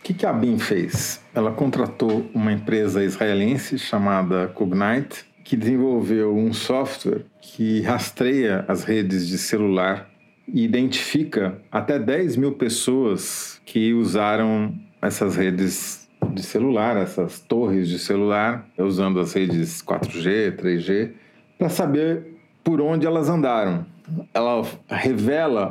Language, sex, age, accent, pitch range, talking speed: Portuguese, male, 40-59, Brazilian, 105-135 Hz, 120 wpm